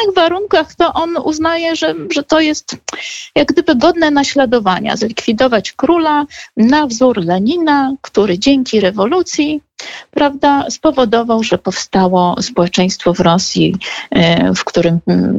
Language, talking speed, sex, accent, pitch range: Polish, 120 wpm, female, native, 190-290 Hz